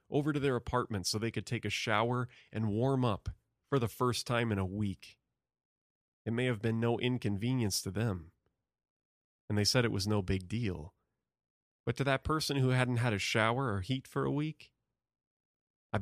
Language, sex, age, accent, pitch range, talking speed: English, male, 30-49, American, 100-130 Hz, 190 wpm